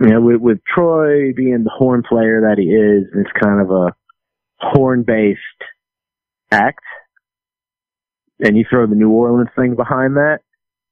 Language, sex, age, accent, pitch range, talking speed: English, male, 30-49, American, 105-135 Hz, 160 wpm